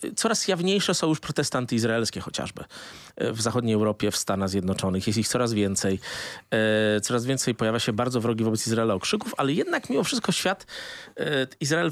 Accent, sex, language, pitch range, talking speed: native, male, Polish, 110-145 Hz, 160 wpm